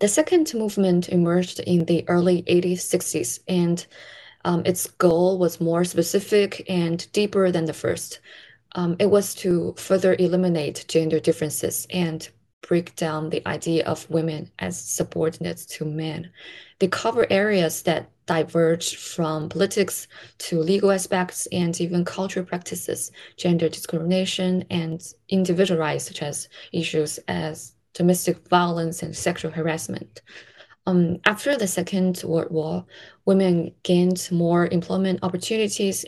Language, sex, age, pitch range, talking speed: English, female, 20-39, 165-185 Hz, 130 wpm